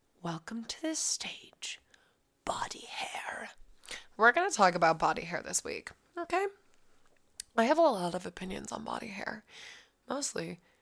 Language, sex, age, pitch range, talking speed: English, female, 20-39, 180-245 Hz, 145 wpm